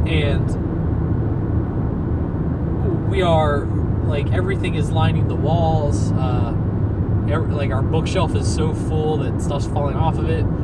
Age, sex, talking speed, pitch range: 20-39, male, 130 wpm, 90-105 Hz